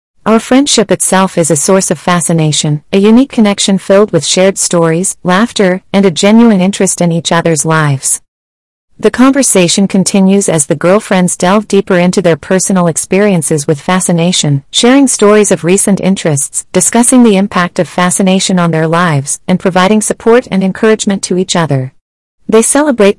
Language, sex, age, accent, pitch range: Chinese, female, 40-59, American, 165-205 Hz